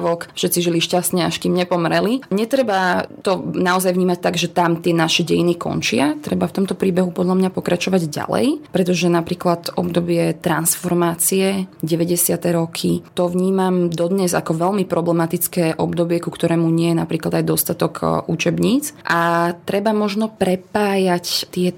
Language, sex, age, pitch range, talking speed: Slovak, female, 20-39, 170-185 Hz, 140 wpm